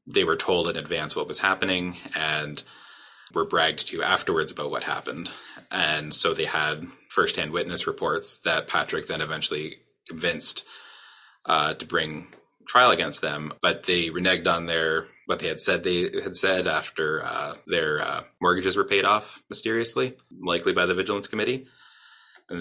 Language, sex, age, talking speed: English, male, 20-39, 160 wpm